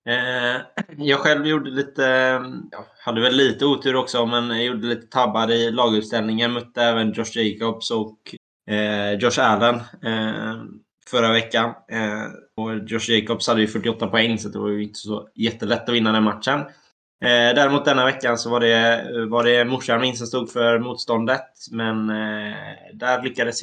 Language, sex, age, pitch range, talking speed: Swedish, male, 20-39, 110-130 Hz, 170 wpm